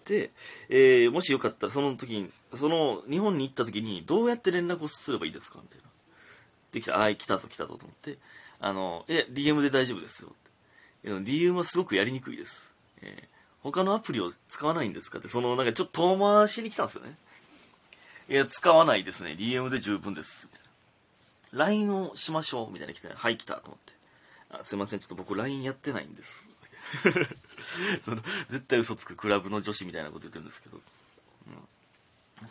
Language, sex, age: Japanese, male, 30-49